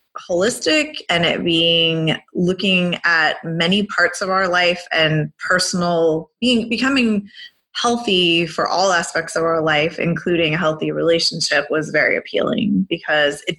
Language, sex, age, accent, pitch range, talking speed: English, female, 20-39, American, 160-195 Hz, 135 wpm